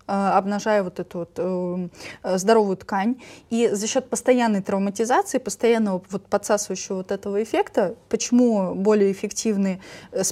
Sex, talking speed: female, 115 wpm